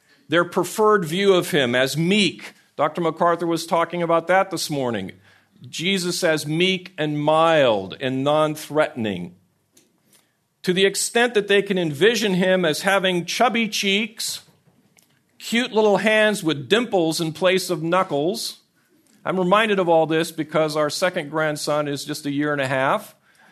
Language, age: English, 50-69